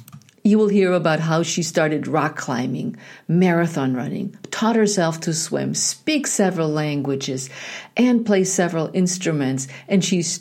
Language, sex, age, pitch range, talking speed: English, female, 50-69, 145-200 Hz, 140 wpm